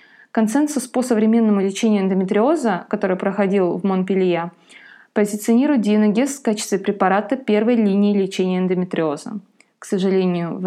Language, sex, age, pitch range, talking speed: Russian, female, 20-39, 195-245 Hz, 120 wpm